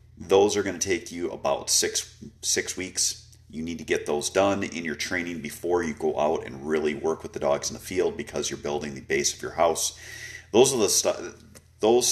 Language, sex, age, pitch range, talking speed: English, male, 40-59, 80-100 Hz, 225 wpm